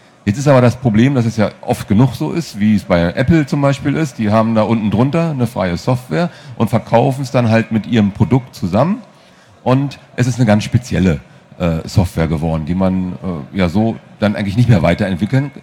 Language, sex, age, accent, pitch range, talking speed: German, male, 40-59, German, 105-130 Hz, 210 wpm